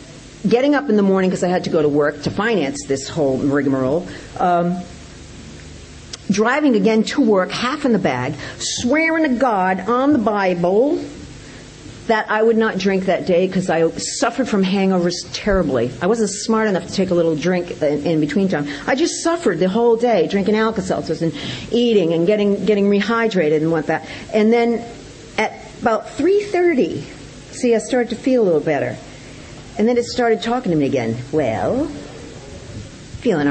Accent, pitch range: American, 165-230 Hz